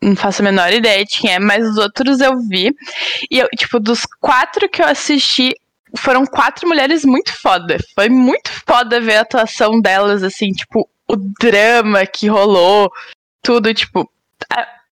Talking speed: 170 wpm